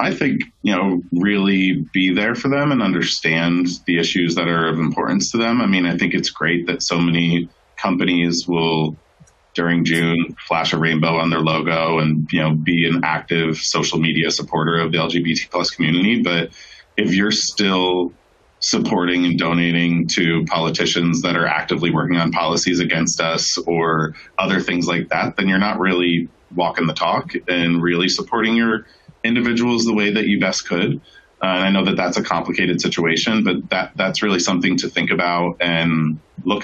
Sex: male